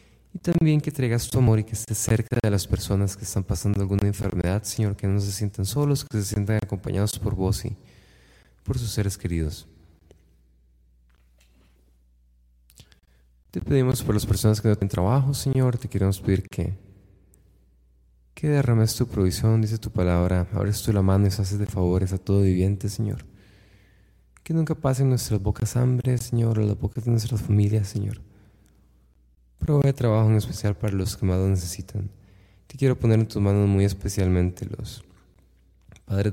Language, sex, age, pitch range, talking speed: Spanish, male, 20-39, 90-110 Hz, 170 wpm